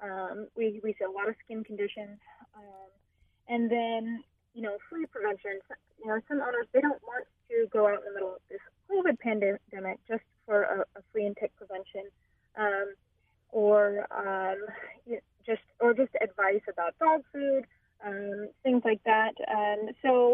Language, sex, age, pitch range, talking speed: English, female, 20-39, 195-245 Hz, 170 wpm